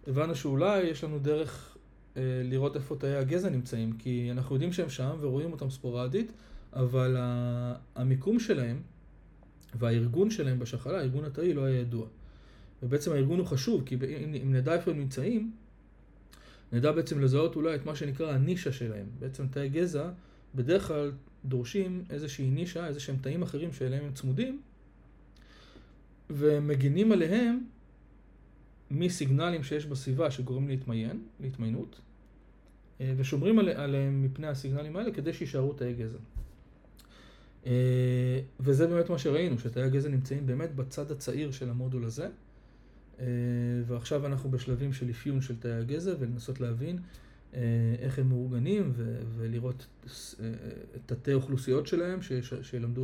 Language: Hebrew